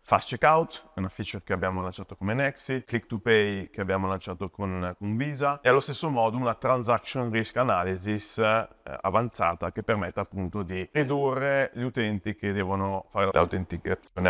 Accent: native